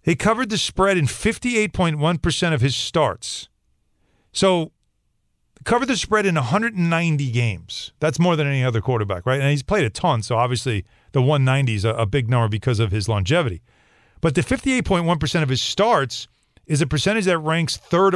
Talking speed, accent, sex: 175 wpm, American, male